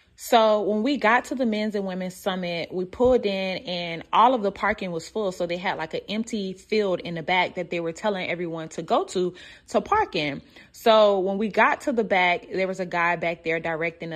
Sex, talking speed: female, 235 wpm